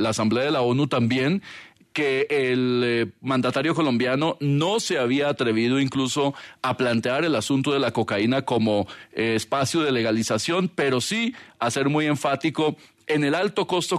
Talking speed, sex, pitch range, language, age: 165 wpm, male, 120-150 Hz, Spanish, 40-59